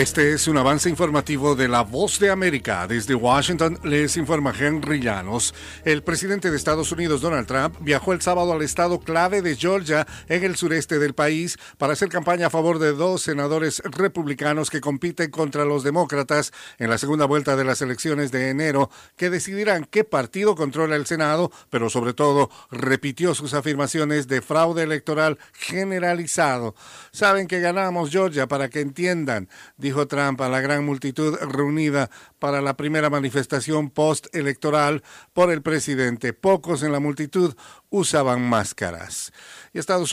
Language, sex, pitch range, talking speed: Spanish, male, 140-170 Hz, 155 wpm